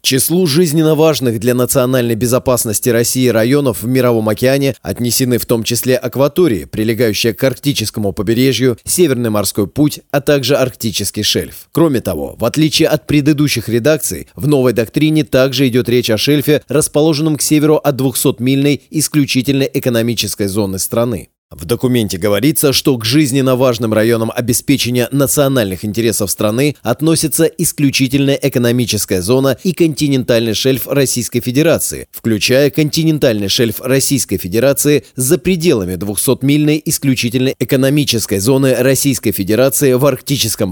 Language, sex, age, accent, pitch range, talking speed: Russian, male, 20-39, native, 115-145 Hz, 130 wpm